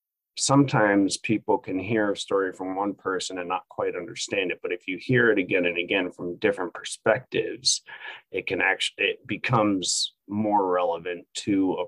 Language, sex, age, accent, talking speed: English, male, 30-49, American, 170 wpm